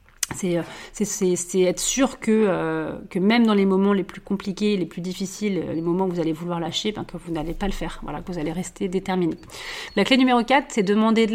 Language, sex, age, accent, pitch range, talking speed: French, female, 40-59, French, 170-200 Hz, 240 wpm